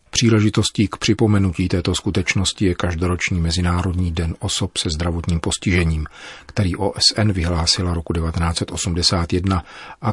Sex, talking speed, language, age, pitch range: male, 115 wpm, Czech, 40-59, 85-105 Hz